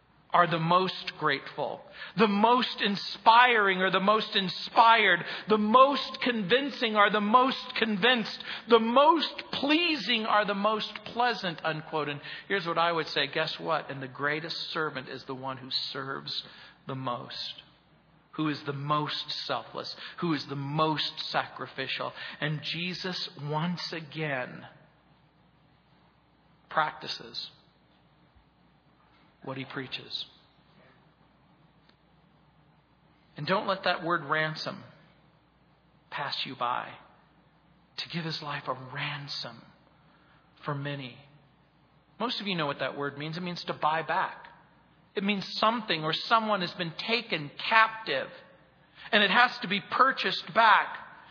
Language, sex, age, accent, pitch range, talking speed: English, male, 50-69, American, 150-215 Hz, 125 wpm